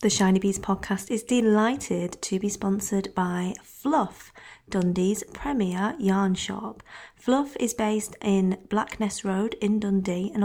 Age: 30-49